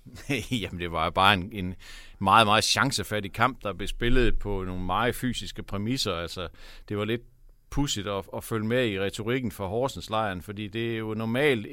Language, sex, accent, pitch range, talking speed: Danish, male, native, 95-115 Hz, 190 wpm